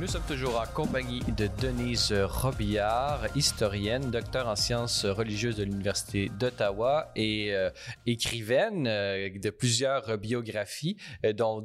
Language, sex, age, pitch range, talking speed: French, male, 30-49, 100-125 Hz, 120 wpm